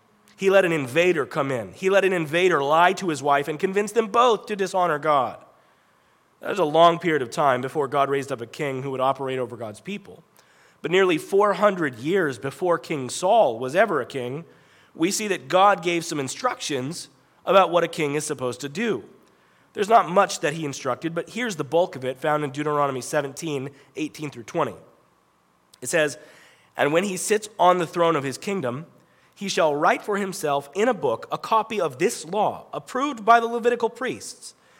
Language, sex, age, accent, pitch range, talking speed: English, male, 30-49, American, 140-190 Hz, 200 wpm